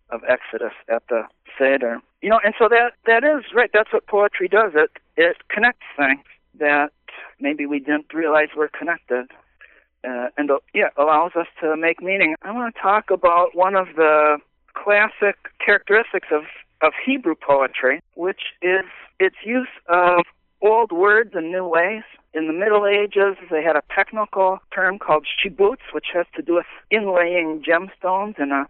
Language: English